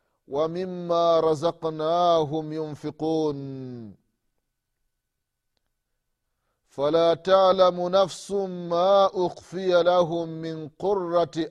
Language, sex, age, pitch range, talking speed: Swahili, male, 30-49, 135-225 Hz, 55 wpm